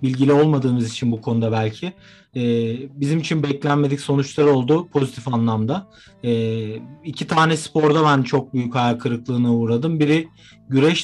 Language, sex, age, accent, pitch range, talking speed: Turkish, male, 40-59, native, 125-160 Hz, 130 wpm